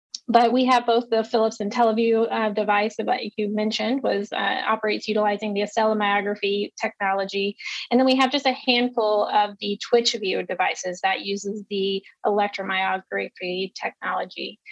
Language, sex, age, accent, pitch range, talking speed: English, female, 20-39, American, 200-230 Hz, 145 wpm